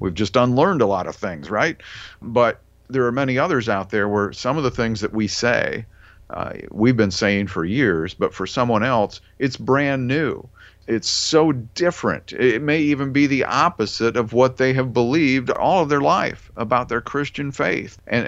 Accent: American